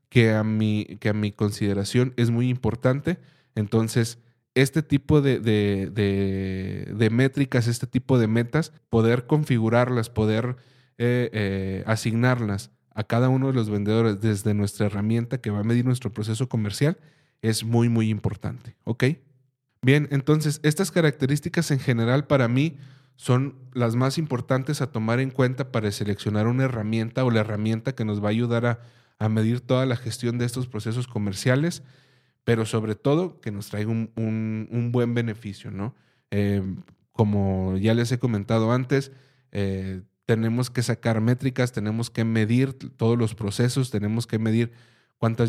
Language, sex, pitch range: Spanish, male, 105-130 Hz